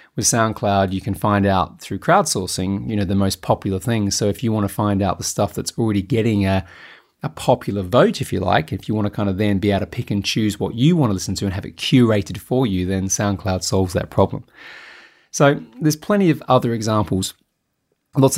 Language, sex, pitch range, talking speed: English, male, 100-125 Hz, 230 wpm